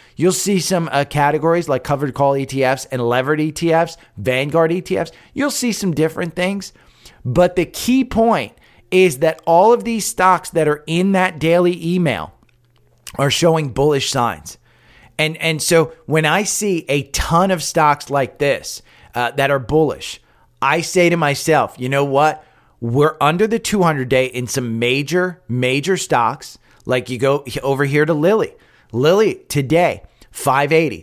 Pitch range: 135-175 Hz